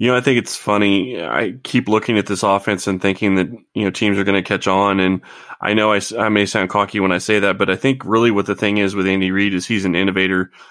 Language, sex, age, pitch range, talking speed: English, male, 20-39, 95-105 Hz, 280 wpm